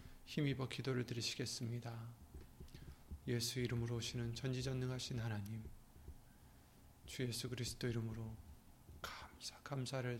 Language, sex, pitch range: Korean, male, 90-130 Hz